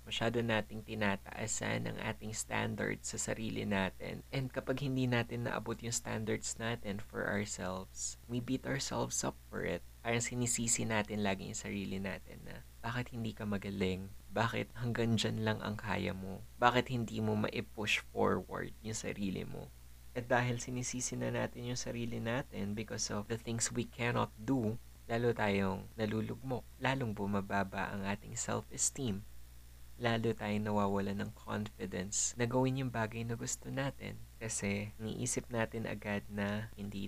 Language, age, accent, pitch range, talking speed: Filipino, 20-39, native, 95-115 Hz, 150 wpm